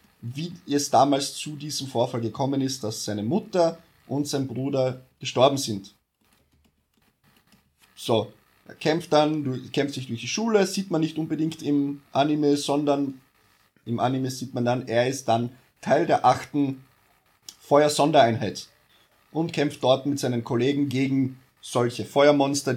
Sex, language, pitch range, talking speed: male, German, 130-160 Hz, 140 wpm